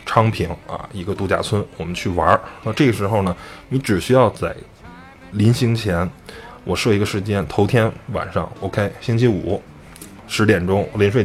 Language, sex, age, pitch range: Chinese, male, 20-39, 90-110 Hz